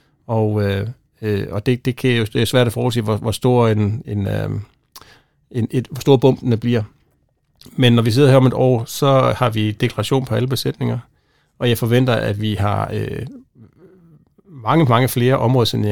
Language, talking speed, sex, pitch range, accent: Danish, 180 wpm, male, 110-125 Hz, native